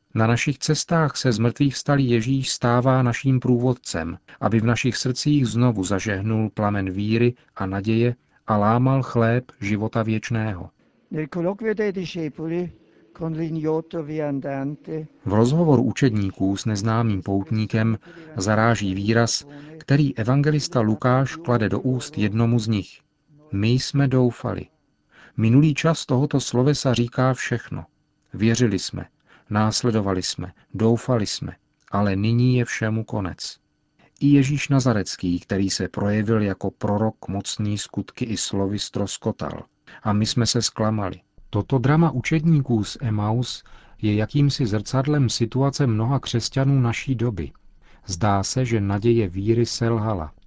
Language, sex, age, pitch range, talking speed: Czech, male, 50-69, 105-135 Hz, 120 wpm